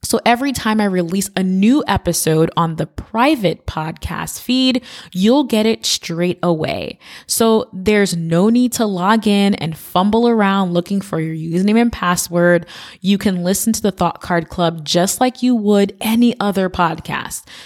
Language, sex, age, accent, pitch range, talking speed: English, female, 20-39, American, 180-225 Hz, 165 wpm